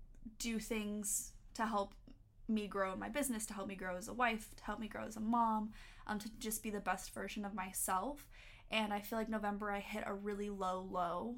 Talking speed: 225 wpm